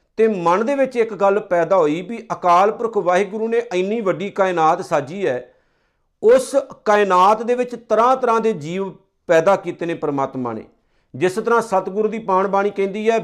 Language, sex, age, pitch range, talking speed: Punjabi, male, 50-69, 175-215 Hz, 170 wpm